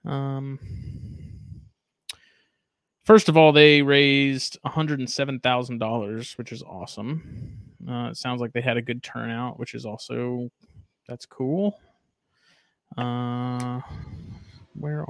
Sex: male